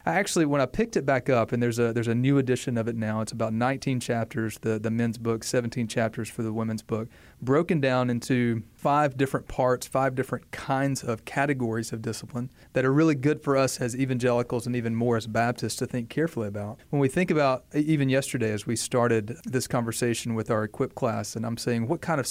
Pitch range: 115-140 Hz